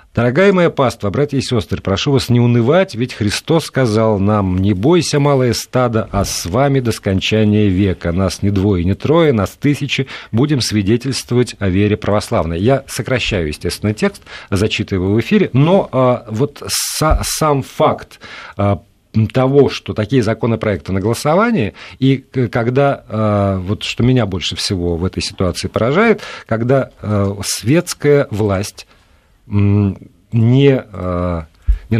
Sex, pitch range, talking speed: male, 95-130 Hz, 130 wpm